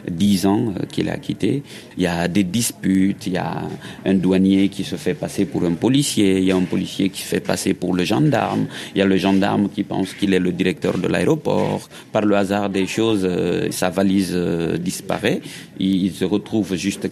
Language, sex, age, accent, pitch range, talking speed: French, male, 50-69, French, 95-105 Hz, 205 wpm